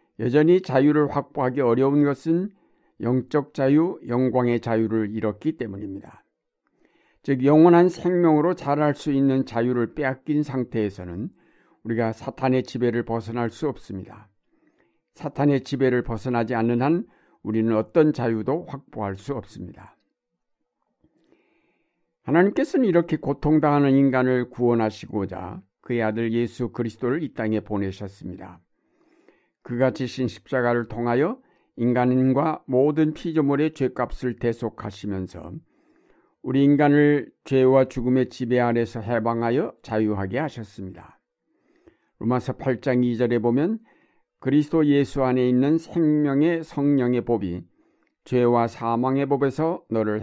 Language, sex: Korean, male